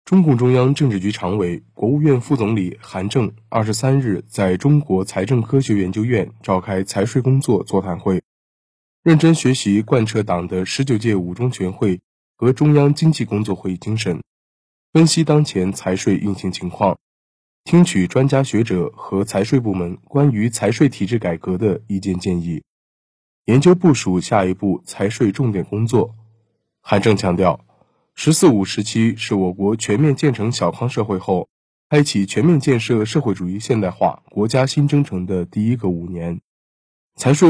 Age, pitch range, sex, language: 20-39, 95-130 Hz, male, Chinese